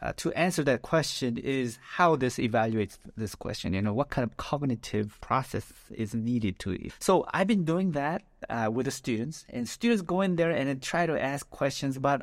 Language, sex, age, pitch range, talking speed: English, male, 30-49, 120-160 Hz, 205 wpm